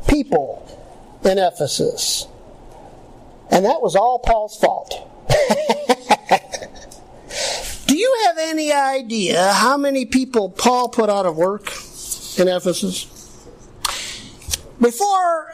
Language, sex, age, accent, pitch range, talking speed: English, male, 50-69, American, 200-295 Hz, 95 wpm